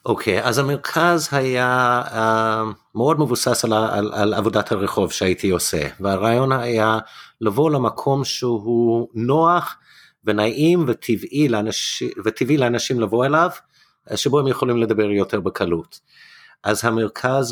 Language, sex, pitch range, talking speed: Hebrew, male, 105-125 Hz, 125 wpm